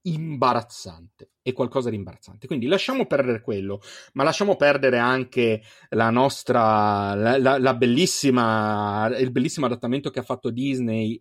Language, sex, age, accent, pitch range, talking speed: Italian, male, 30-49, native, 110-145 Hz, 140 wpm